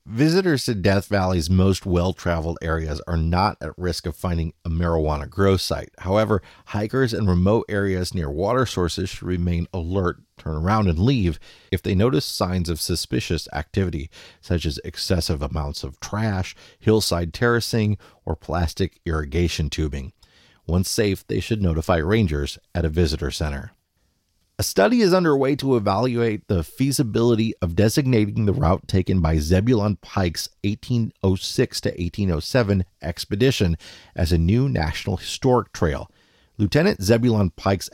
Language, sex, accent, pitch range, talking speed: English, male, American, 85-110 Hz, 140 wpm